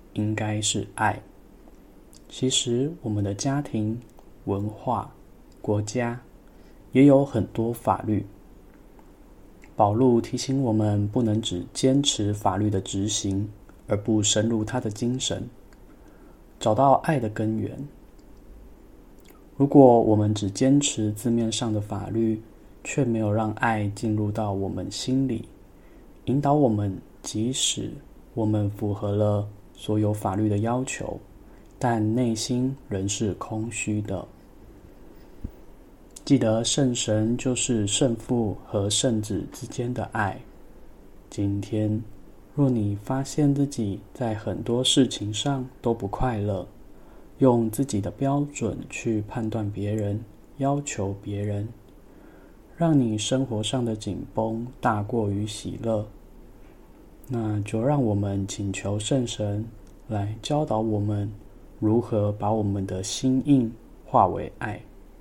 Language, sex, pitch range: Chinese, male, 105-125 Hz